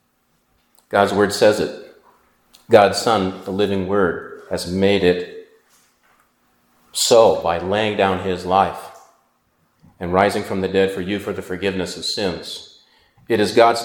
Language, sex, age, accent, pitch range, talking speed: English, male, 40-59, American, 100-130 Hz, 145 wpm